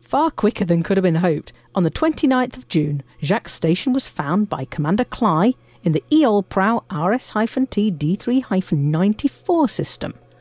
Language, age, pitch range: English, 50-69, 155-230 Hz